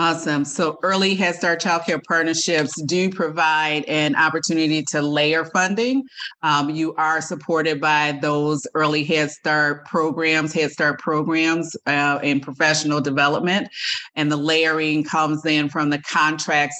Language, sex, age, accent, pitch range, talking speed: English, female, 30-49, American, 150-165 Hz, 145 wpm